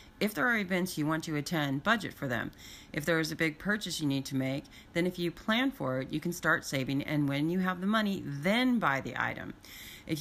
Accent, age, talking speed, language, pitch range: American, 30-49, 245 wpm, English, 140-175 Hz